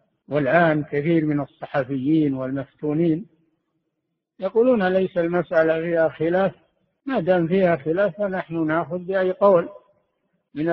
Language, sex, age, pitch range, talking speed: Arabic, male, 60-79, 155-180 Hz, 105 wpm